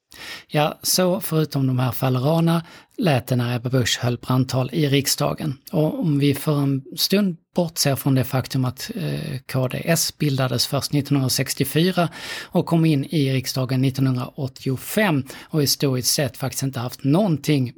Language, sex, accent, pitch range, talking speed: Swedish, male, native, 130-150 Hz, 140 wpm